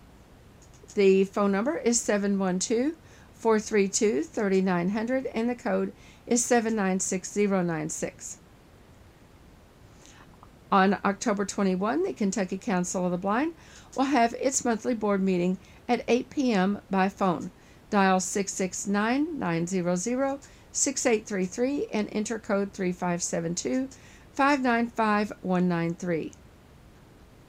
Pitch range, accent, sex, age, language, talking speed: 190-235 Hz, American, female, 50-69, English, 75 wpm